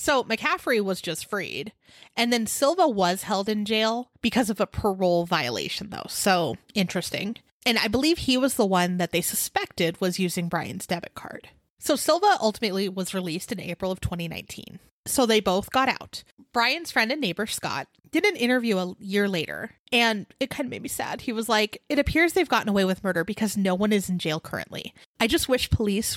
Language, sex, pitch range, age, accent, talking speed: English, female, 185-250 Hz, 30-49, American, 200 wpm